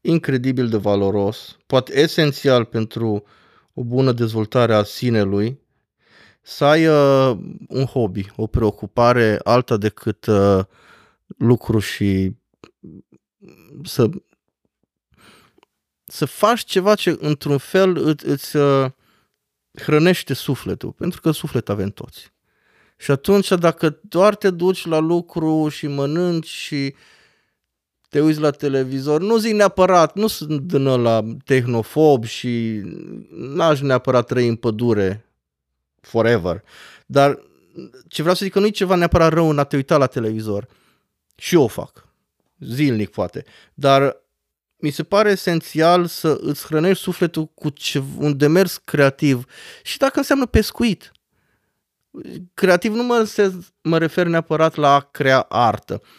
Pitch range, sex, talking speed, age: 115-170 Hz, male, 125 wpm, 20-39